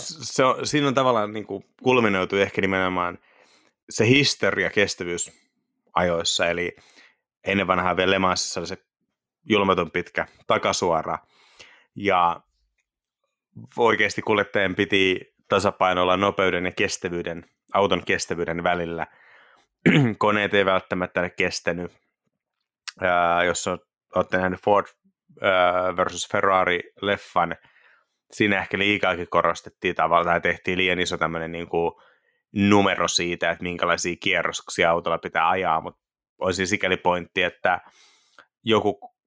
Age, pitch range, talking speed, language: 30-49, 85-100 Hz, 105 wpm, Finnish